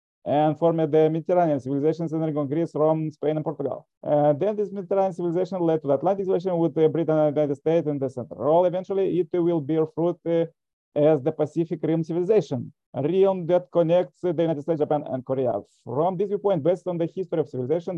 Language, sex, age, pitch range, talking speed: English, male, 30-49, 150-175 Hz, 210 wpm